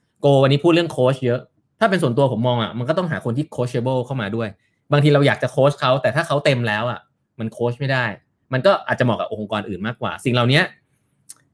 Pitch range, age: 115-150 Hz, 20-39